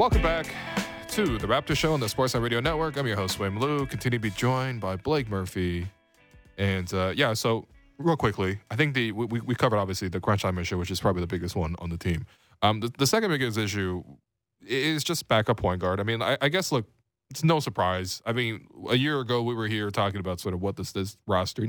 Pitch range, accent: 95-120 Hz, American